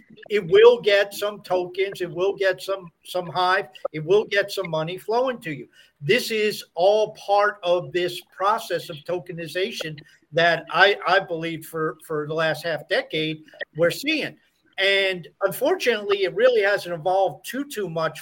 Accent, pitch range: American, 165-195 Hz